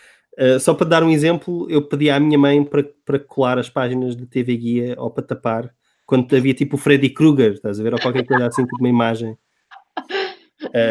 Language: English